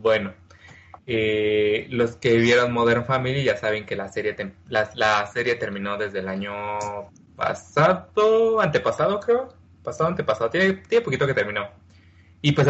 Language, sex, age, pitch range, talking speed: Spanish, male, 20-39, 90-135 Hz, 150 wpm